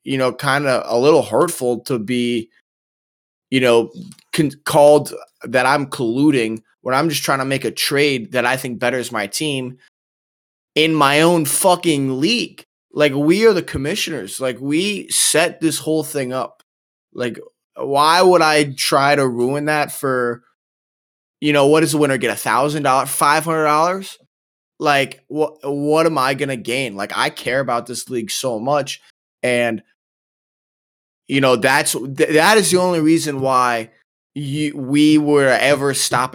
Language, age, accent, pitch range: English, 20-39, American, 130-160 Hz